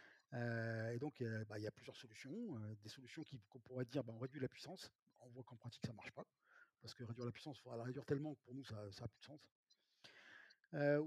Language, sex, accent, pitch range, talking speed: French, male, French, 120-150 Hz, 260 wpm